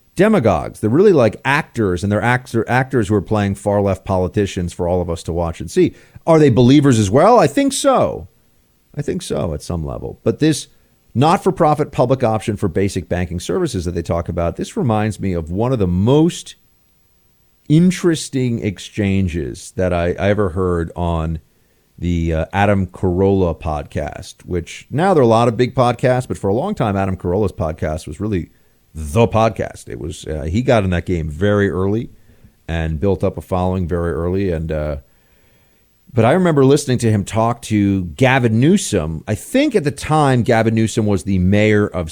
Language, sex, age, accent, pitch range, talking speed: English, male, 40-59, American, 85-115 Hz, 190 wpm